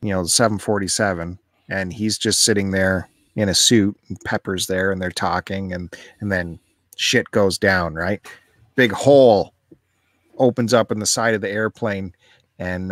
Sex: male